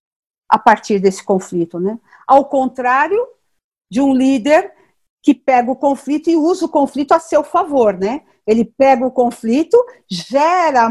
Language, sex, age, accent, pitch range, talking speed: Portuguese, female, 50-69, Brazilian, 220-295 Hz, 150 wpm